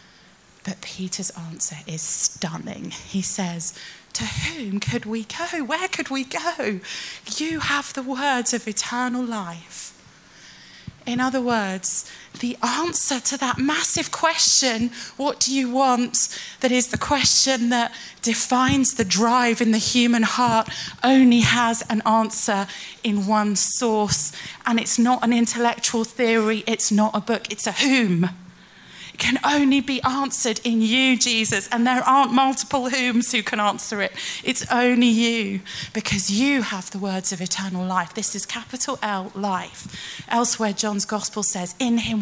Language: English